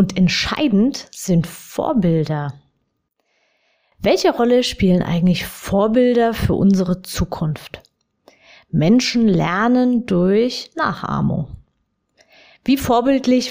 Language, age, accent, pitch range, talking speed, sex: German, 30-49, German, 180-245 Hz, 80 wpm, female